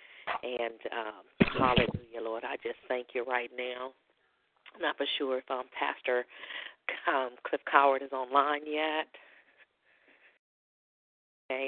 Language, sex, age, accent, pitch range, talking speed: English, female, 40-59, American, 135-160 Hz, 125 wpm